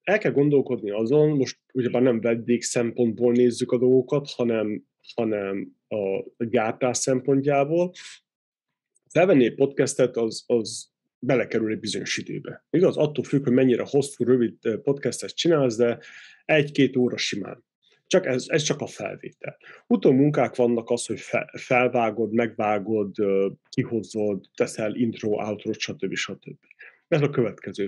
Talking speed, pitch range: 130 wpm, 115-140 Hz